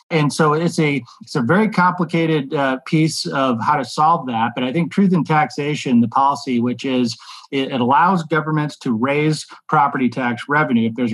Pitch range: 130-170 Hz